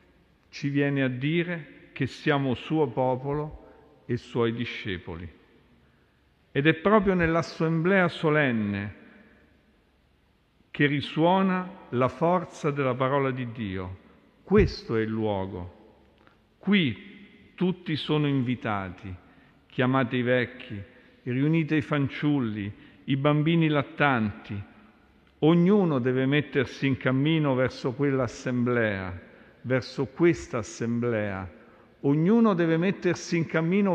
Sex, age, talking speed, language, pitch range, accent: male, 50-69, 100 wpm, Italian, 115-155 Hz, native